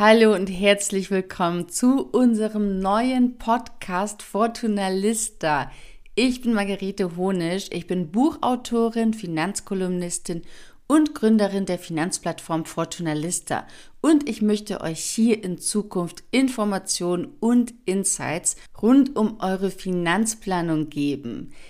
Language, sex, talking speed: German, female, 110 wpm